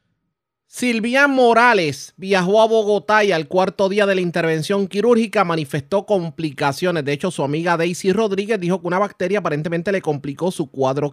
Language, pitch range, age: Spanish, 145-200 Hz, 30-49